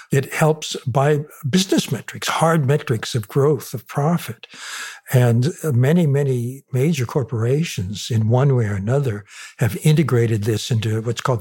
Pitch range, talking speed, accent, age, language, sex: 120-150 Hz, 140 wpm, American, 60-79, English, male